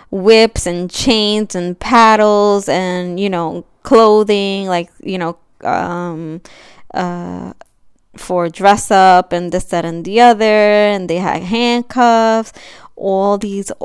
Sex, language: female, English